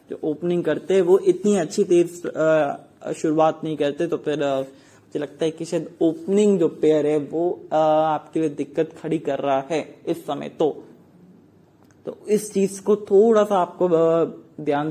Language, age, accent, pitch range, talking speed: English, 20-39, Indian, 150-175 Hz, 165 wpm